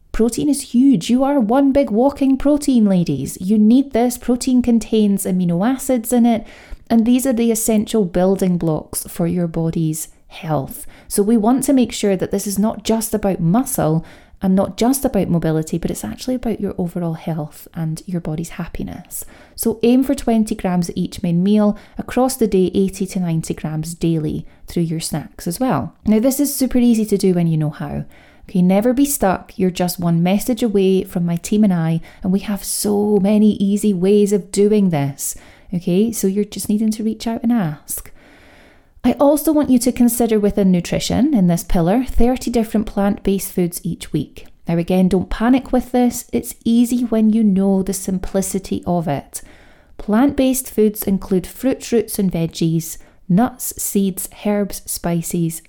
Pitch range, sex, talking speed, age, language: 180-235 Hz, female, 180 wpm, 30-49, English